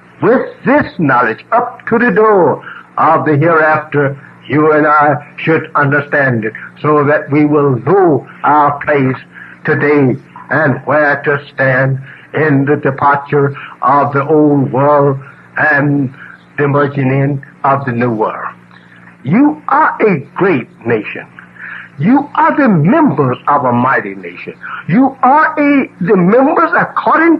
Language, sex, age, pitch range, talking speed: English, male, 60-79, 135-185 Hz, 135 wpm